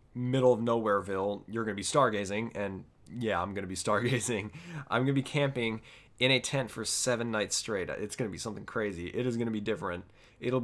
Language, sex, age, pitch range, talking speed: English, male, 20-39, 100-125 Hz, 205 wpm